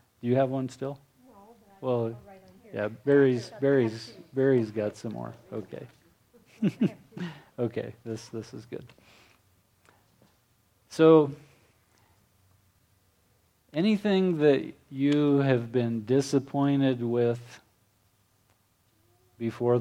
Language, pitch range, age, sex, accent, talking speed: English, 105-135 Hz, 40-59, male, American, 85 wpm